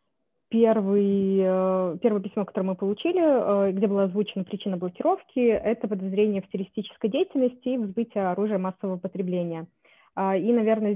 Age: 20-39